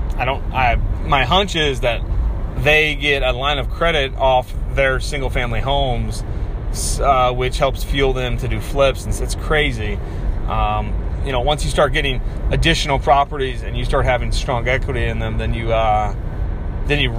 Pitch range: 95-140 Hz